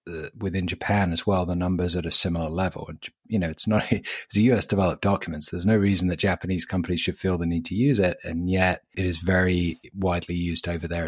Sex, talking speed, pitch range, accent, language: male, 225 wpm, 85-100 Hz, British, English